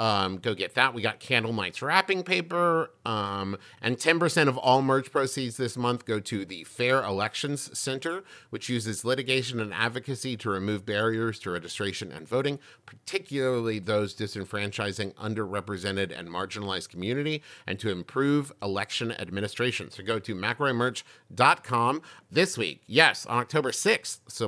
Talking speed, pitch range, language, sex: 145 wpm, 105-140 Hz, English, male